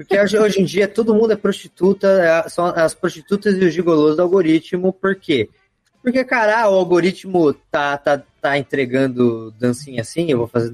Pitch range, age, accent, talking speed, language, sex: 135-200 Hz, 20-39, Brazilian, 175 wpm, Portuguese, male